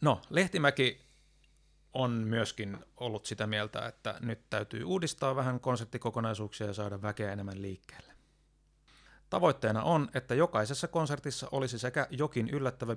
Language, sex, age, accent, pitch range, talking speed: Finnish, male, 30-49, native, 110-130 Hz, 125 wpm